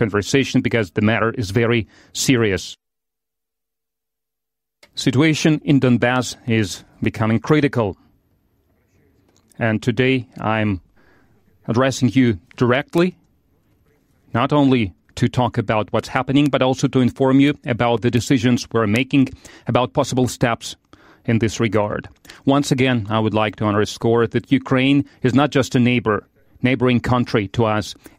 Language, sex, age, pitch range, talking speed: English, male, 40-59, 110-135 Hz, 130 wpm